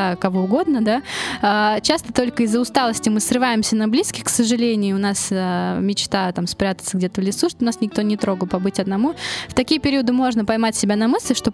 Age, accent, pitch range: 20-39, native, 205-255 Hz